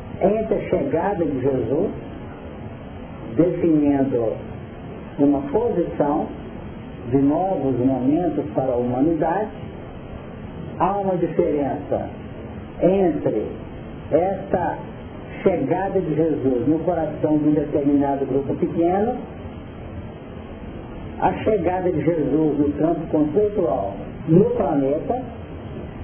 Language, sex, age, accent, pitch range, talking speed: Portuguese, male, 50-69, Brazilian, 160-200 Hz, 90 wpm